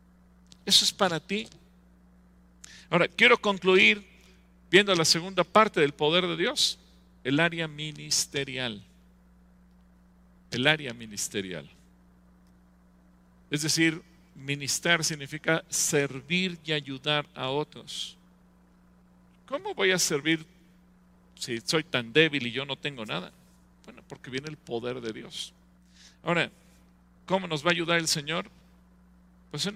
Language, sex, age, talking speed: English, male, 50-69, 125 wpm